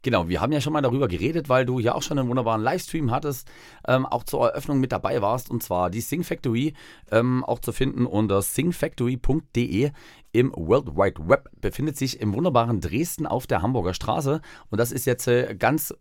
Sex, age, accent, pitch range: male, 40-59, German, 110-140 Hz